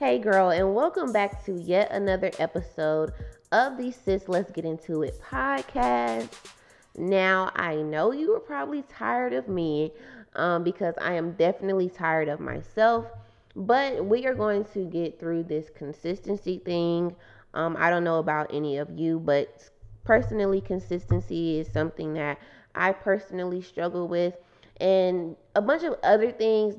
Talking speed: 150 wpm